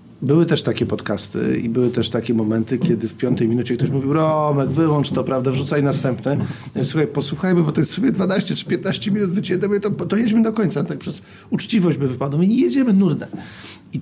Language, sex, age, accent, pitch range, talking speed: Polish, male, 40-59, native, 125-160 Hz, 210 wpm